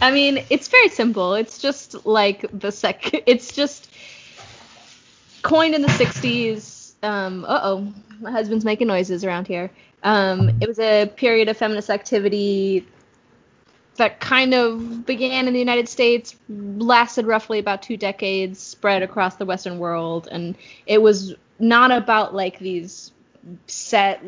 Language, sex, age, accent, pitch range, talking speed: English, female, 20-39, American, 180-225 Hz, 145 wpm